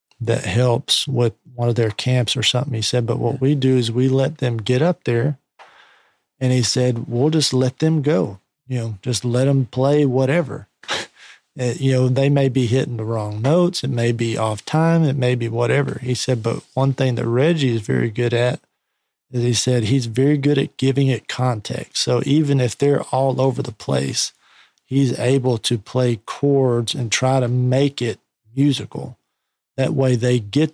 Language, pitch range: English, 120-135 Hz